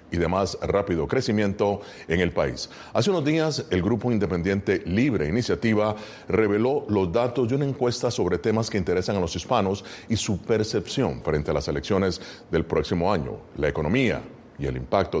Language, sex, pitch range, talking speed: Spanish, male, 90-125 Hz, 175 wpm